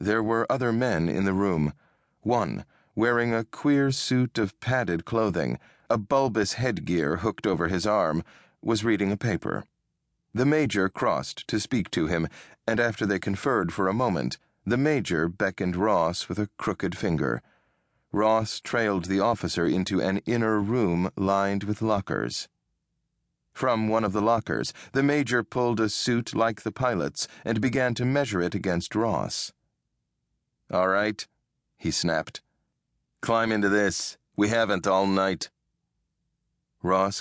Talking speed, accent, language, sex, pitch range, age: 145 wpm, American, English, male, 95-115 Hz, 40-59